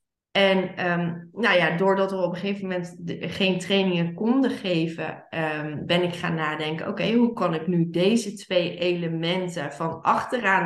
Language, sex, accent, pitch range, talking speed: Dutch, female, Dutch, 170-210 Hz, 140 wpm